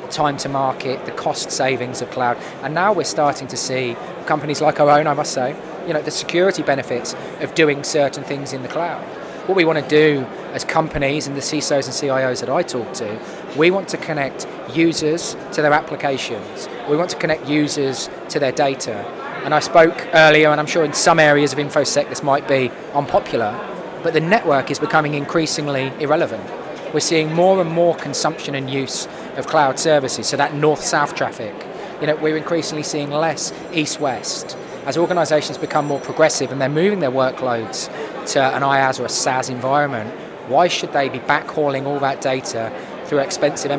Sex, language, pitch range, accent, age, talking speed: male, English, 135-155 Hz, British, 20-39, 190 wpm